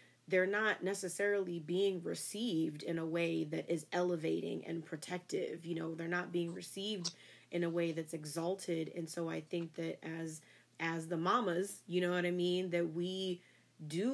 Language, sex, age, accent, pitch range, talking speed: English, female, 30-49, American, 170-190 Hz, 175 wpm